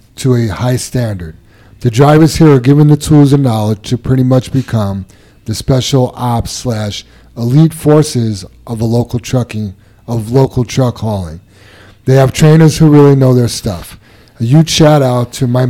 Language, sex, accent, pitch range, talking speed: English, male, American, 110-140 Hz, 170 wpm